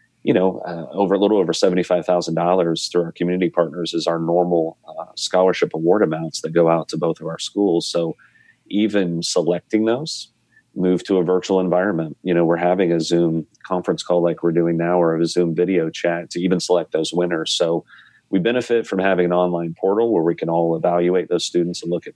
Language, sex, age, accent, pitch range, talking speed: English, male, 40-59, American, 85-95 Hz, 205 wpm